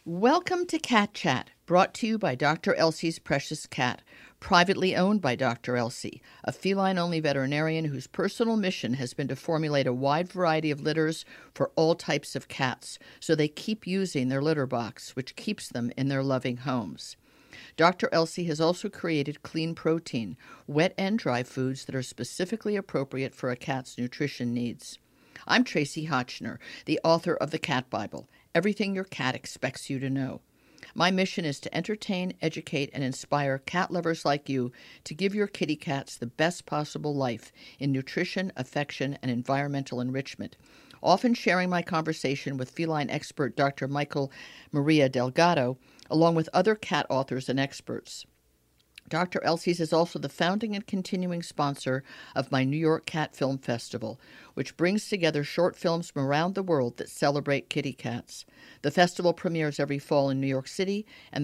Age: 50-69